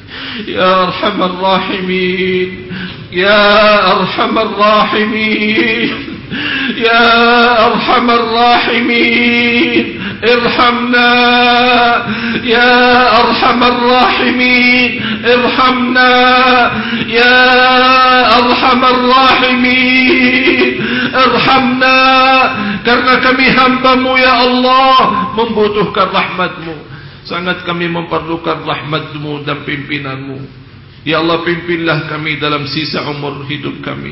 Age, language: 50-69, English